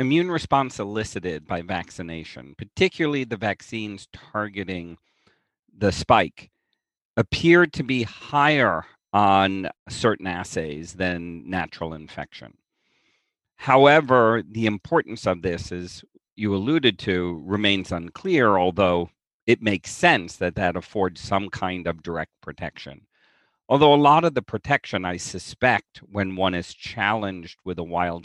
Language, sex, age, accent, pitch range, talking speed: English, male, 40-59, American, 85-110 Hz, 125 wpm